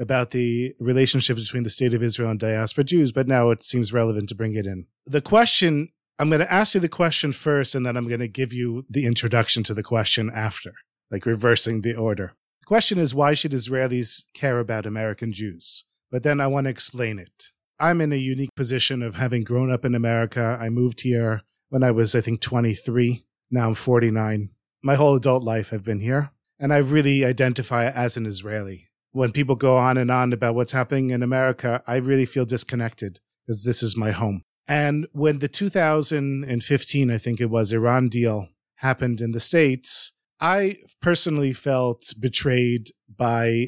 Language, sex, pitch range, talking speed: English, male, 115-140 Hz, 190 wpm